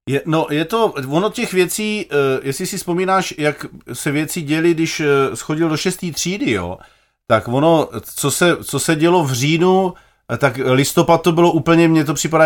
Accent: native